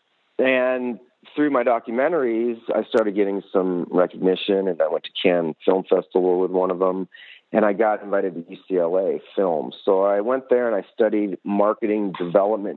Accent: American